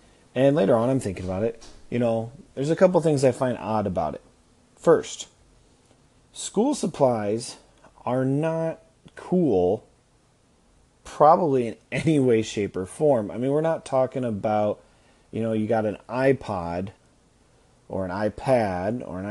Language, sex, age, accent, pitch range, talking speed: English, male, 30-49, American, 105-140 Hz, 150 wpm